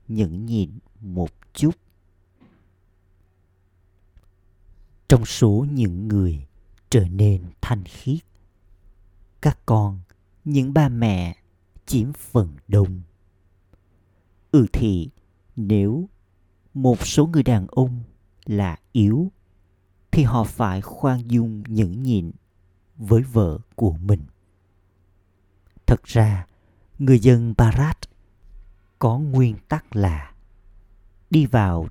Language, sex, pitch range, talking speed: Vietnamese, male, 90-115 Hz, 100 wpm